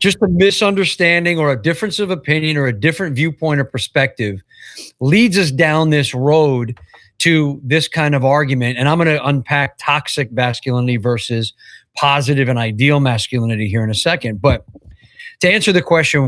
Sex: male